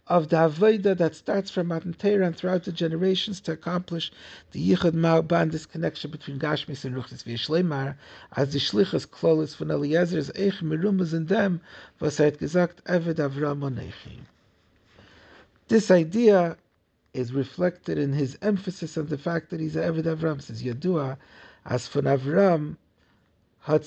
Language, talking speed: English, 145 wpm